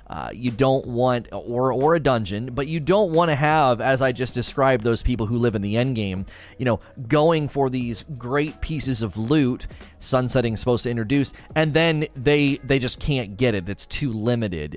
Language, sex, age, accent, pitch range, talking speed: English, male, 30-49, American, 105-130 Hz, 205 wpm